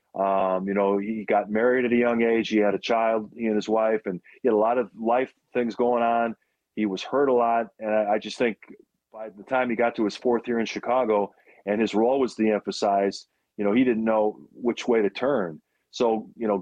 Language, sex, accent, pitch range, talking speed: English, male, American, 105-125 Hz, 240 wpm